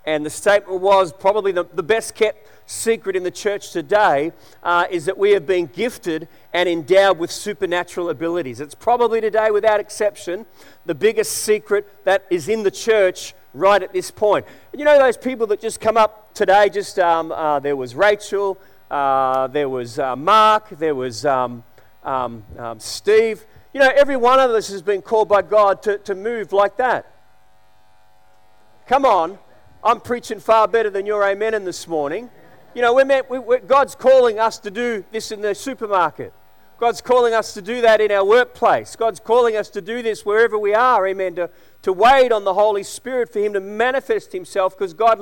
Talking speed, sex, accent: 190 wpm, male, Australian